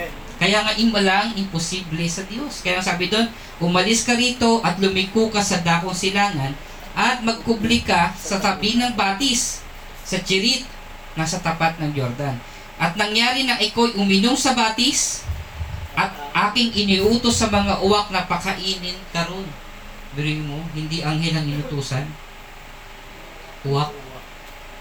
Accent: native